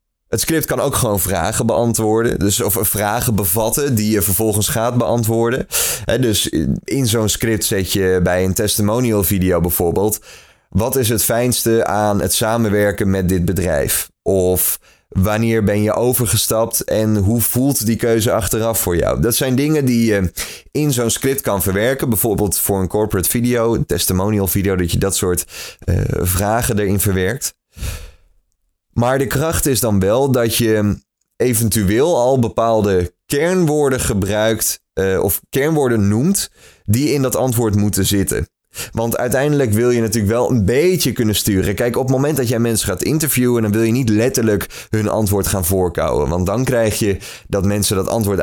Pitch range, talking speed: 100-120 Hz, 165 wpm